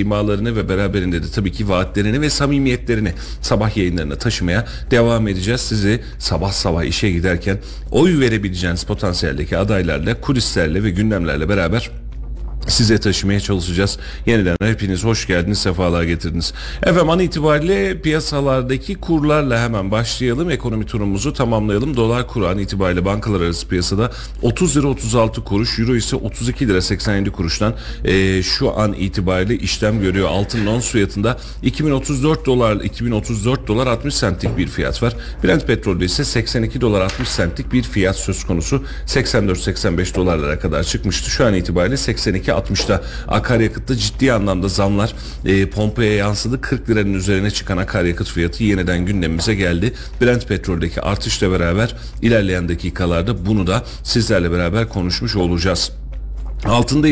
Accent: native